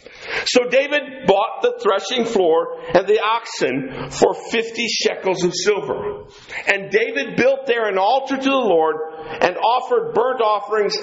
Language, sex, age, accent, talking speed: English, male, 50-69, American, 145 wpm